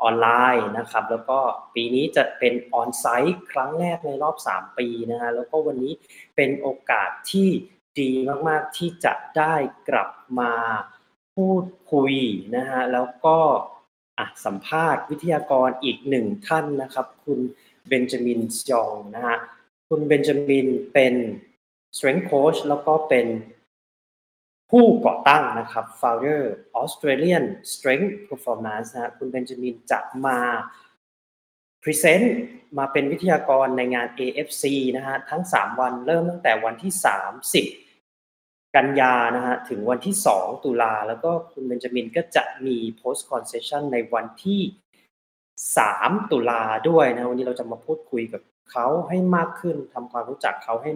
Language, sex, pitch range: Thai, male, 120-160 Hz